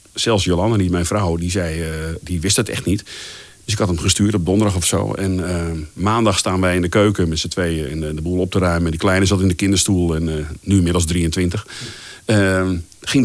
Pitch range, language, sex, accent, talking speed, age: 90-105 Hz, Dutch, male, Dutch, 235 wpm, 50-69